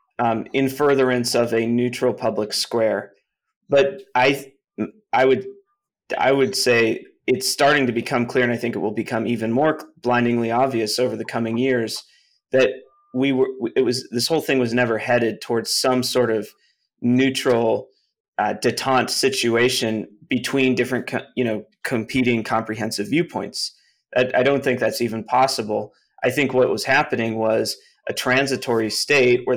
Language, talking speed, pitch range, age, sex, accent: English, 160 wpm, 115-135 Hz, 30-49, male, American